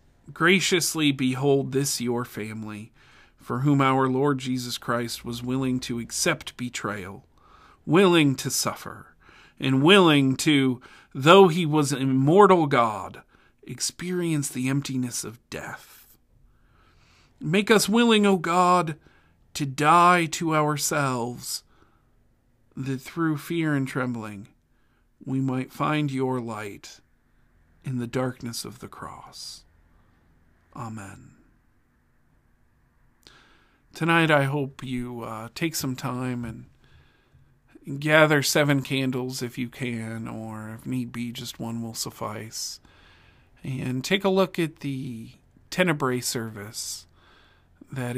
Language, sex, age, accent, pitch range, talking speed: English, male, 40-59, American, 115-145 Hz, 115 wpm